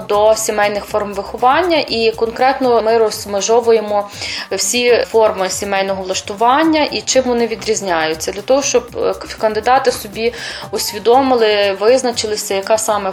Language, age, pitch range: Ukrainian, 20-39, 200-235 Hz